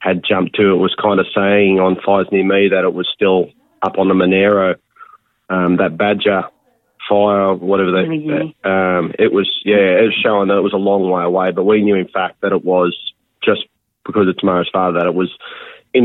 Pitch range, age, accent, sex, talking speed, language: 95-110 Hz, 30-49, Australian, male, 215 wpm, English